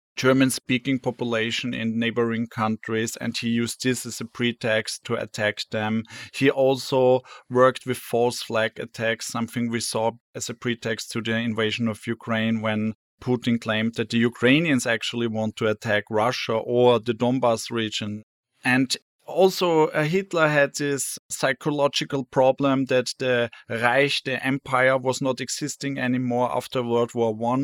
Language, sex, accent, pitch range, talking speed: English, male, German, 115-135 Hz, 150 wpm